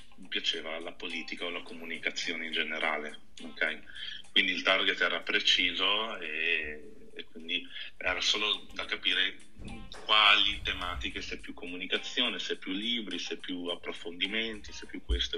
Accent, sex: native, male